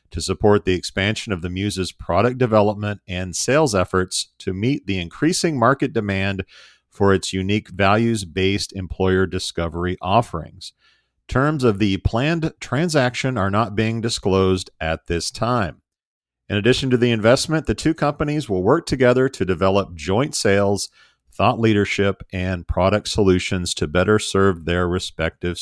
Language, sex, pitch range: English, male, 95-120 Hz